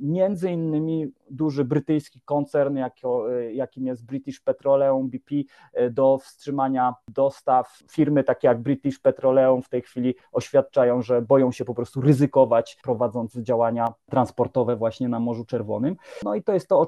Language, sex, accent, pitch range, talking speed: Polish, male, native, 125-150 Hz, 145 wpm